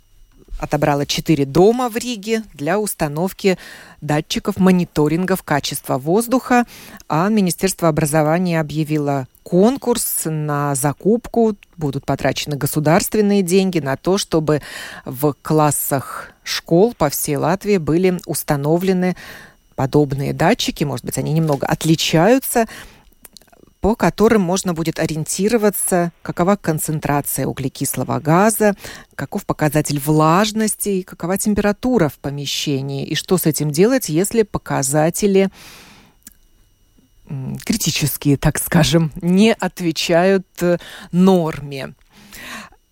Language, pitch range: Russian, 150-200 Hz